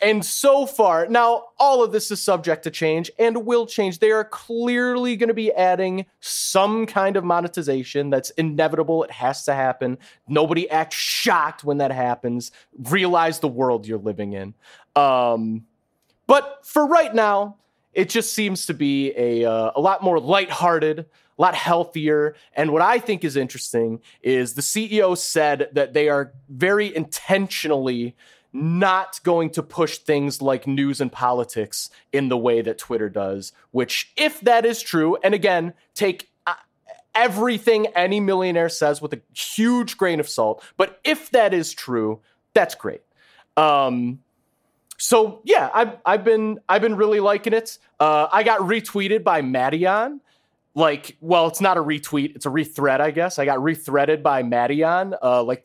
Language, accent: English, American